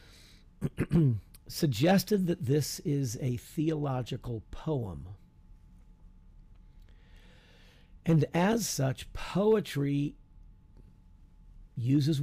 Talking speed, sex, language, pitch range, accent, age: 60 wpm, male, English, 95-145 Hz, American, 50-69